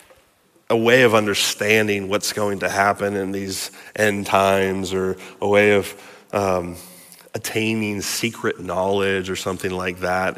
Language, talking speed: English, 140 wpm